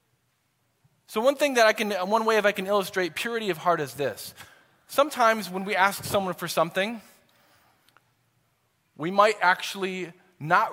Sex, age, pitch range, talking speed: male, 20-39, 175-210 Hz, 155 wpm